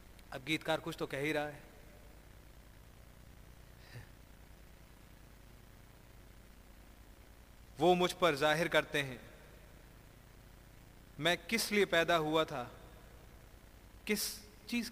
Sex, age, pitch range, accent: male, 40-59, 115-175 Hz, native